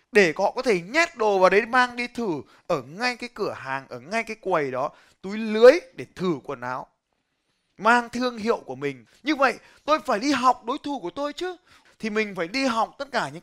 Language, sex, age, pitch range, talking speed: Vietnamese, male, 20-39, 170-255 Hz, 230 wpm